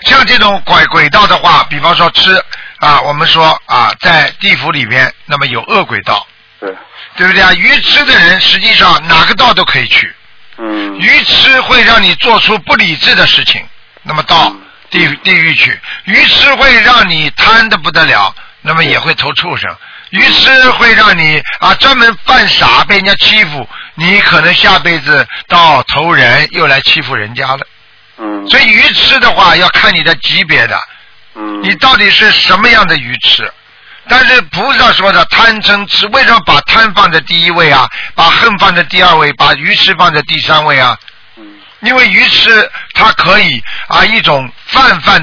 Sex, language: male, Chinese